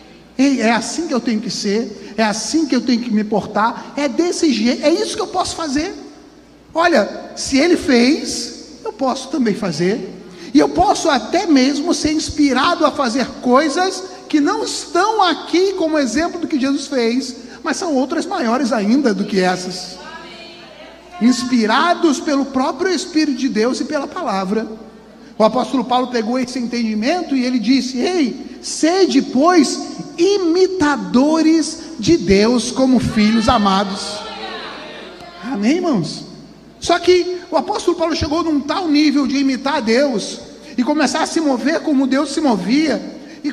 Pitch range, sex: 250-325 Hz, male